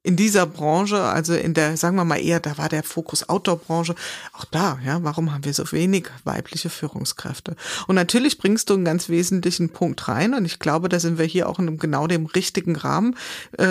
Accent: German